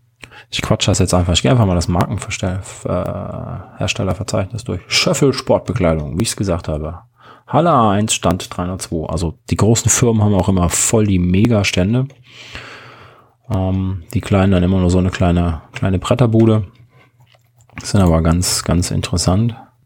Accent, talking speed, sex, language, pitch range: German, 155 wpm, male, German, 95-125 Hz